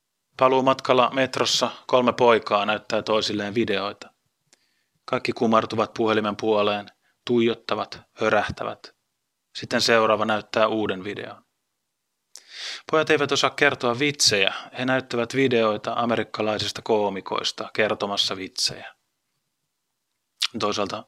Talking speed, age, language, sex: 90 wpm, 30-49, Finnish, male